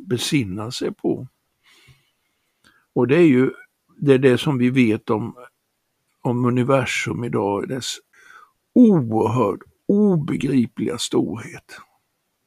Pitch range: 110-135 Hz